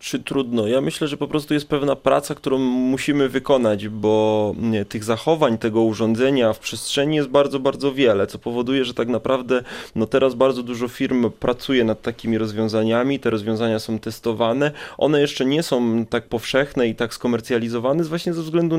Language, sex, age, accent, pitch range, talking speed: Polish, male, 20-39, native, 115-145 Hz, 170 wpm